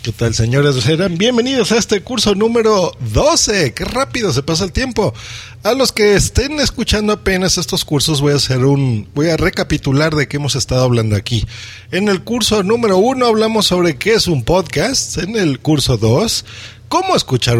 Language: Spanish